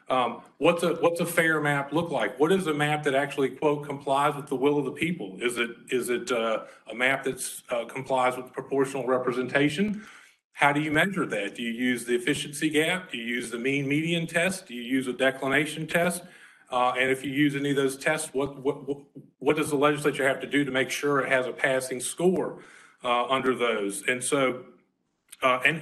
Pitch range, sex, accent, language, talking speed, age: 130-160 Hz, male, American, English, 220 wpm, 40-59